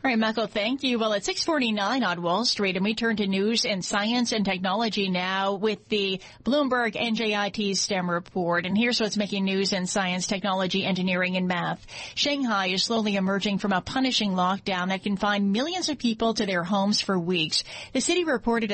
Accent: American